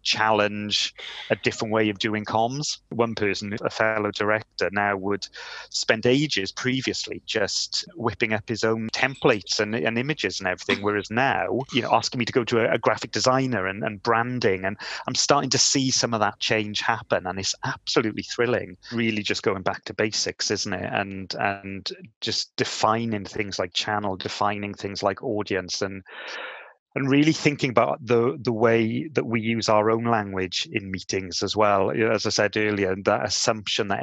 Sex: male